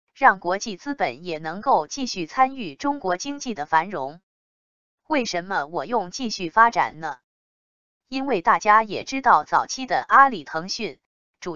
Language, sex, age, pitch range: Chinese, female, 20-39, 175-255 Hz